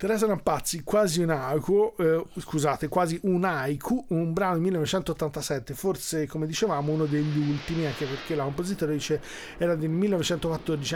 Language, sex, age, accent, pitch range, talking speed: Italian, male, 40-59, native, 155-185 Hz, 140 wpm